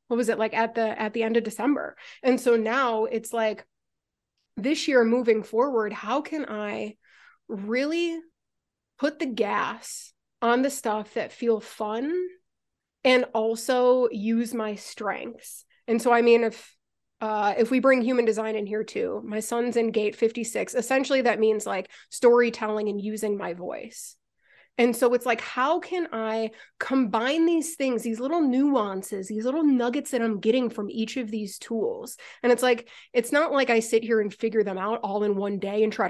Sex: female